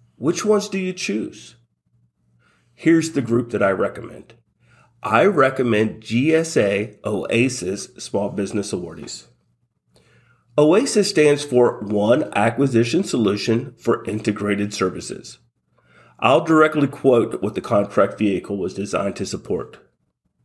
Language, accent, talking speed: English, American, 110 wpm